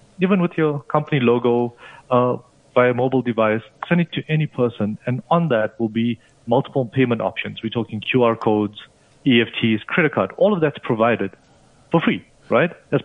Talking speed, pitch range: 175 wpm, 110-140 Hz